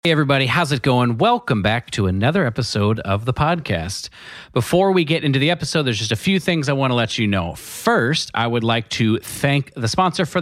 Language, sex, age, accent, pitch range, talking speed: English, male, 30-49, American, 115-155 Hz, 225 wpm